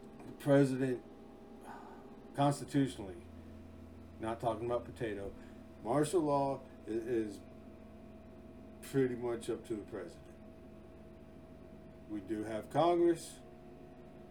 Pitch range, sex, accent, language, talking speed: 100-125 Hz, male, American, English, 80 wpm